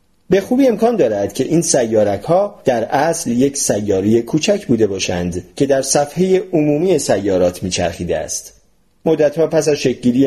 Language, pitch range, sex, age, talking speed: Persian, 110-170 Hz, male, 40-59, 150 wpm